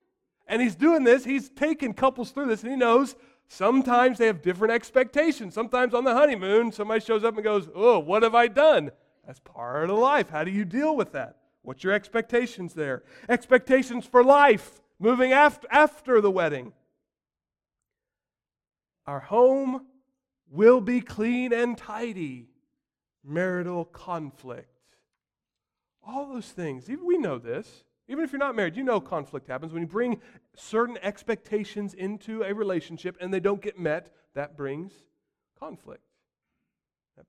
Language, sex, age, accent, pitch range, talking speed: English, male, 40-59, American, 205-260 Hz, 150 wpm